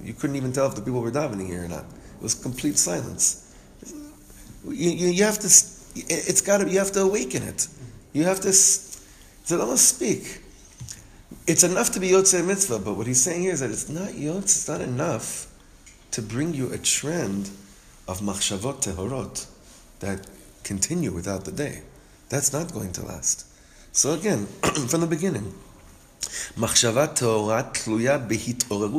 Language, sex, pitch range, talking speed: English, male, 105-155 Hz, 160 wpm